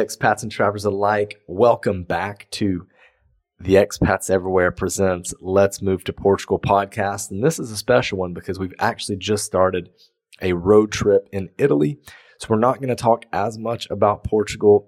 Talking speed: 170 wpm